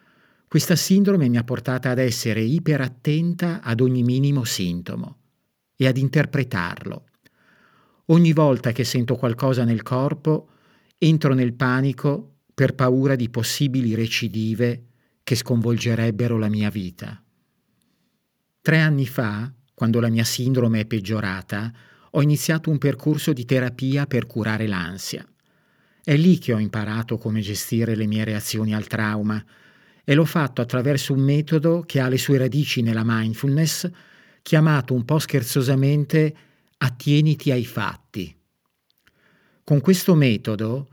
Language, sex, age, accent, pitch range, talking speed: Italian, male, 50-69, native, 115-150 Hz, 130 wpm